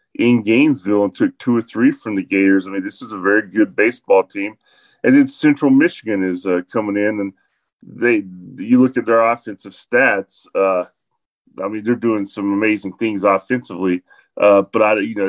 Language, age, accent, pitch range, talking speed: English, 30-49, American, 100-140 Hz, 190 wpm